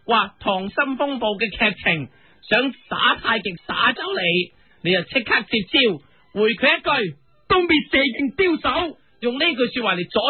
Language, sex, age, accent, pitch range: Chinese, male, 30-49, native, 205-290 Hz